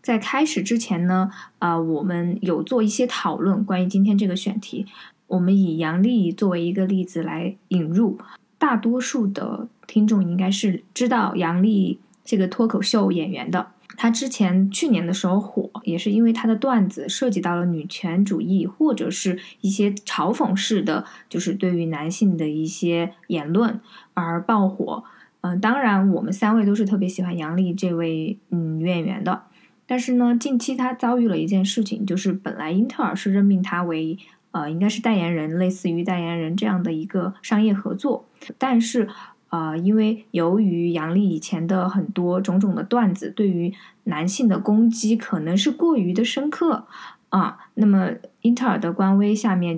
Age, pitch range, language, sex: 20-39, 175-220 Hz, Chinese, female